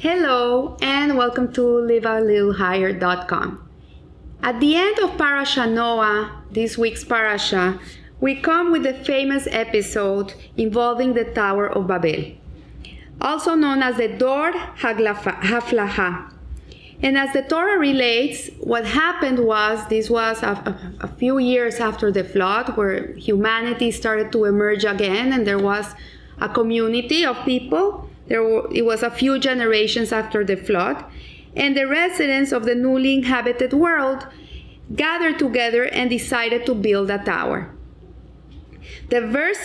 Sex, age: female, 30-49